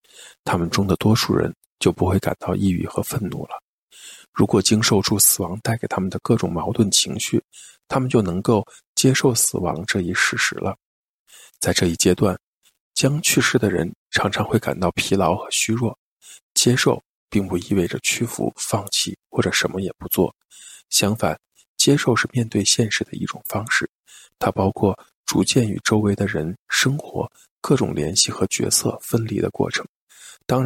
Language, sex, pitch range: Chinese, male, 95-120 Hz